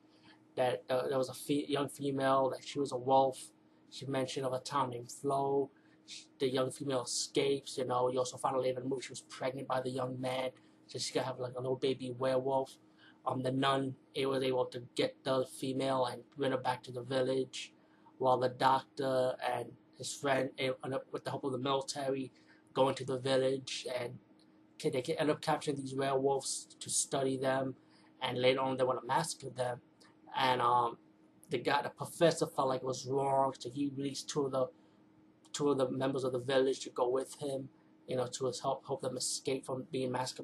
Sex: male